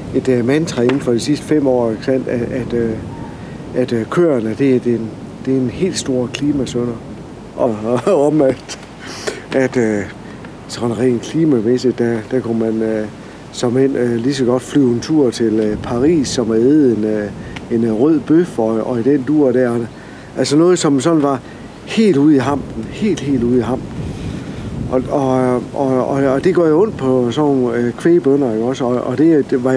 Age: 60-79